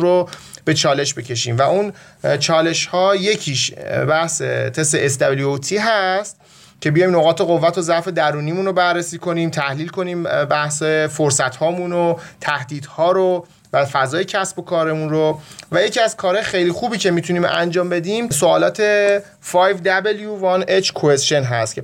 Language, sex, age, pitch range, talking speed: Persian, male, 30-49, 150-190 Hz, 135 wpm